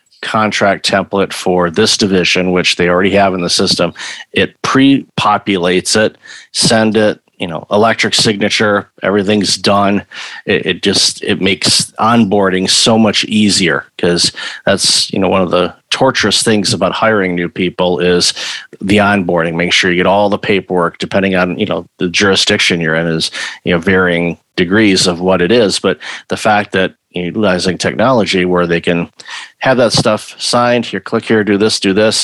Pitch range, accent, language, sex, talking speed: 90-110 Hz, American, English, male, 170 wpm